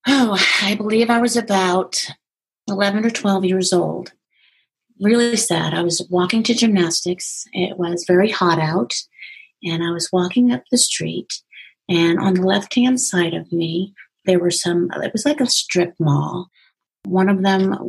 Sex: female